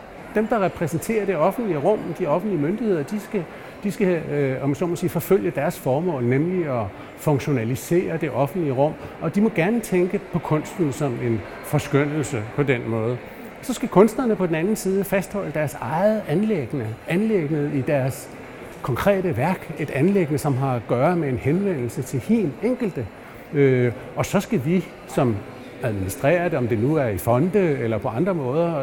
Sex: male